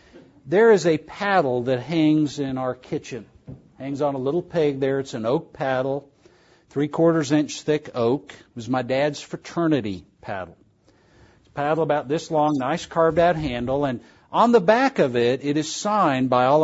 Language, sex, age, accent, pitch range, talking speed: English, male, 50-69, American, 130-170 Hz, 185 wpm